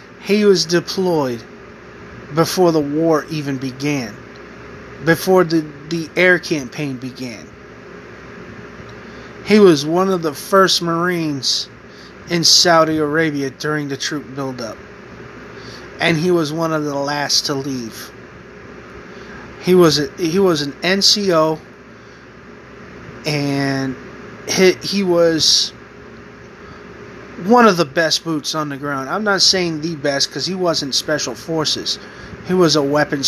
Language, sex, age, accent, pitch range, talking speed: English, male, 30-49, American, 145-180 Hz, 125 wpm